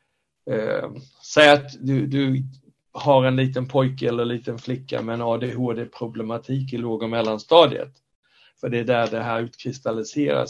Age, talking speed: 60-79, 145 wpm